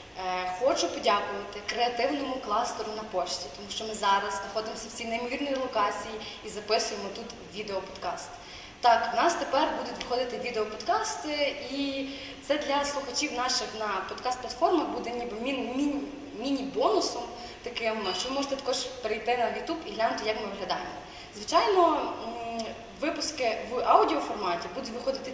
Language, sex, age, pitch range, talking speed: Ukrainian, female, 20-39, 225-275 Hz, 135 wpm